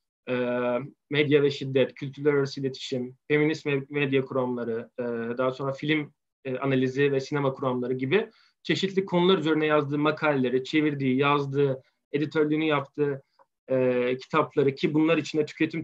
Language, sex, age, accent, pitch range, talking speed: Turkish, male, 40-59, native, 140-180 Hz, 115 wpm